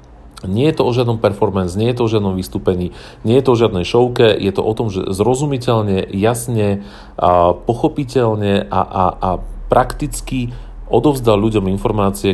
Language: Slovak